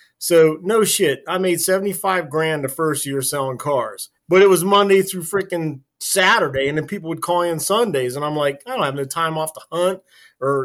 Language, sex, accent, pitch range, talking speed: English, male, American, 135-175 Hz, 215 wpm